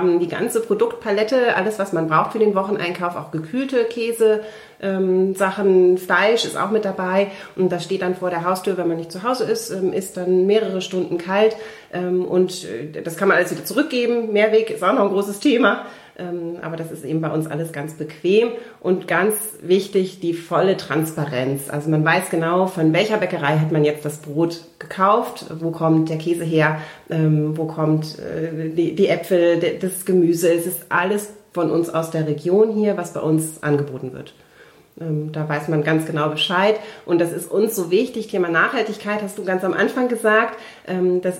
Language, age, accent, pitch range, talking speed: German, 40-59, German, 165-195 Hz, 180 wpm